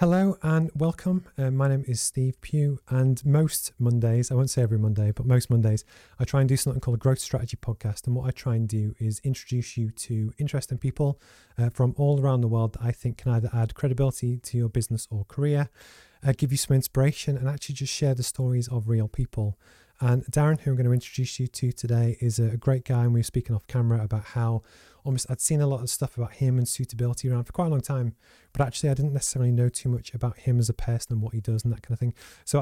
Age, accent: 30-49, British